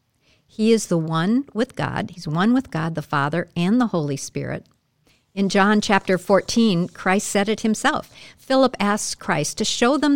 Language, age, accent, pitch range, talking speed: English, 50-69, American, 155-220 Hz, 175 wpm